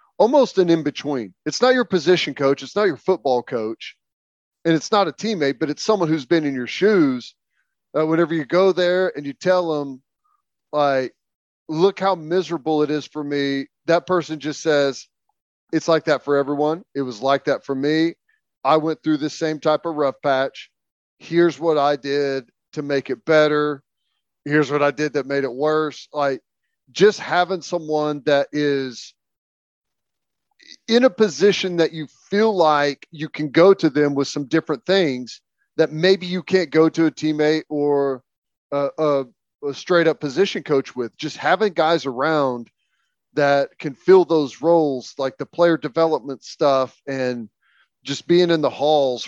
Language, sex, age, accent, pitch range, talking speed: English, male, 40-59, American, 140-170 Hz, 170 wpm